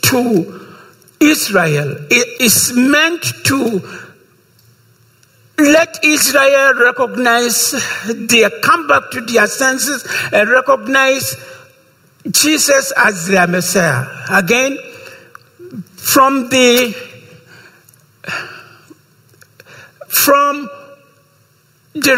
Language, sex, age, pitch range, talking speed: English, male, 60-79, 225-280 Hz, 70 wpm